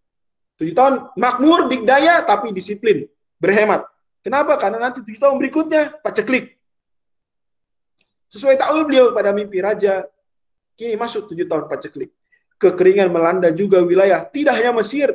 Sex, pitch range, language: male, 195-275 Hz, Indonesian